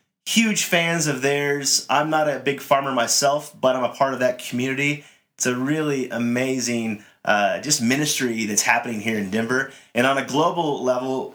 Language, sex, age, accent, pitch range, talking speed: English, male, 30-49, American, 115-150 Hz, 180 wpm